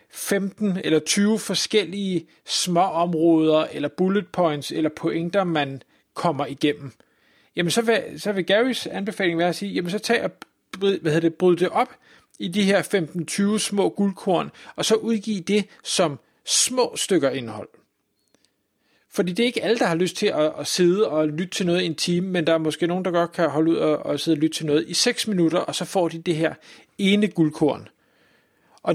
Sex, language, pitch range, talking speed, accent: male, Danish, 160-205 Hz, 200 wpm, native